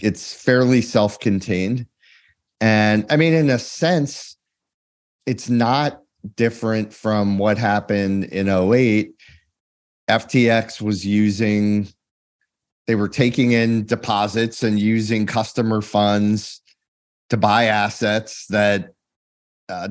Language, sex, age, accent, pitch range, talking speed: English, male, 40-59, American, 95-115 Hz, 100 wpm